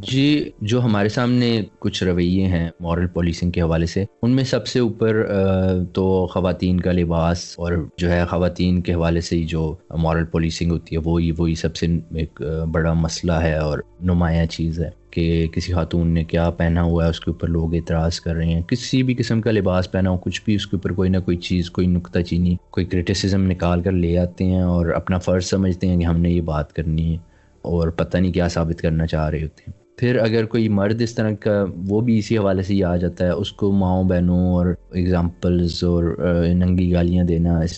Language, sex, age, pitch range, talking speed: Urdu, male, 20-39, 85-95 Hz, 220 wpm